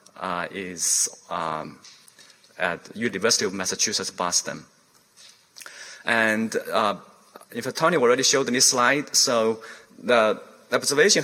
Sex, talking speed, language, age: male, 110 wpm, English, 30-49